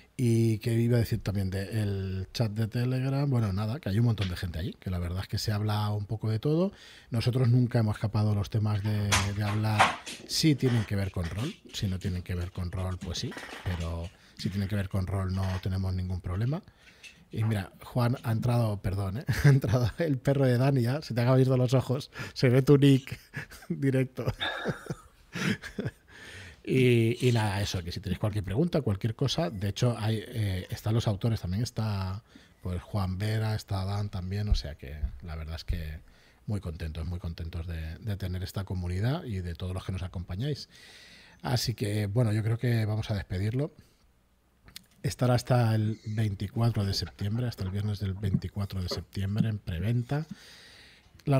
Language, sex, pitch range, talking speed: Spanish, male, 95-120 Hz, 195 wpm